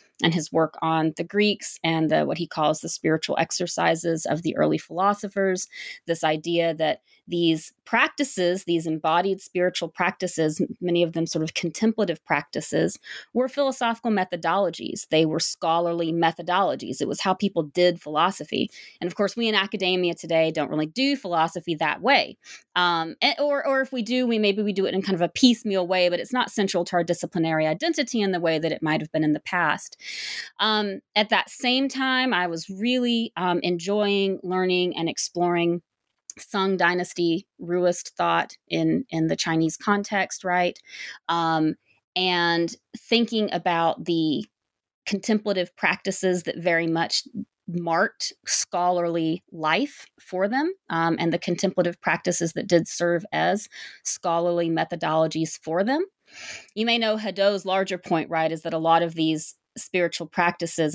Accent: American